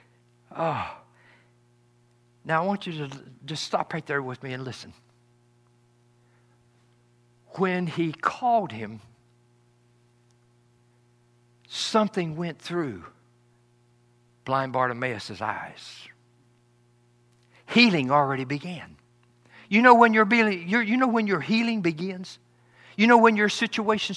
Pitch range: 120-180 Hz